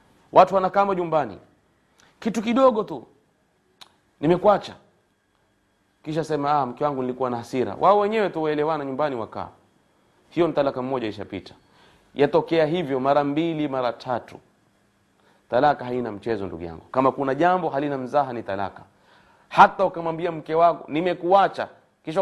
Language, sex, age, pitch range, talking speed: Swahili, male, 30-49, 125-165 Hz, 130 wpm